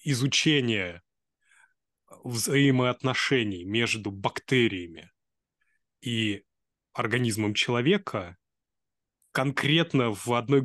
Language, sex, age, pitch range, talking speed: Russian, male, 20-39, 110-140 Hz, 55 wpm